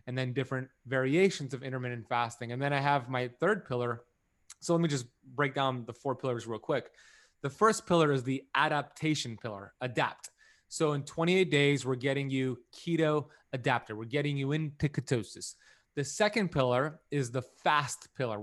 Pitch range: 125-150 Hz